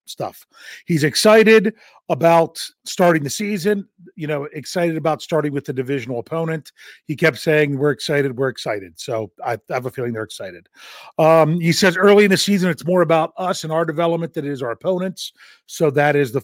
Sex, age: male, 40-59